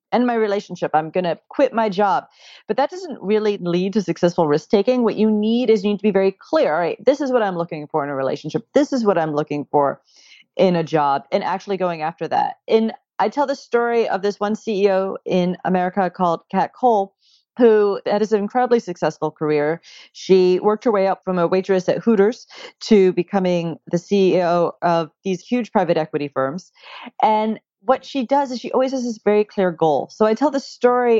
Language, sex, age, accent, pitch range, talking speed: English, female, 40-59, American, 170-225 Hz, 210 wpm